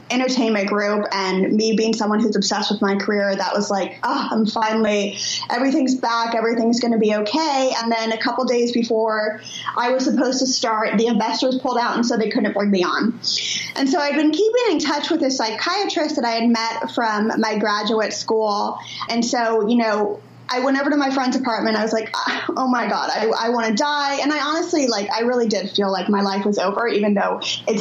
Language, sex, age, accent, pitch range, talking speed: English, female, 20-39, American, 205-245 Hz, 220 wpm